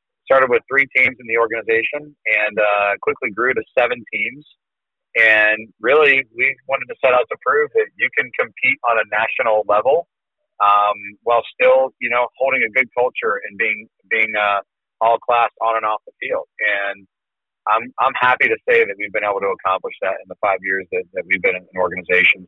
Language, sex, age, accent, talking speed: English, male, 40-59, American, 200 wpm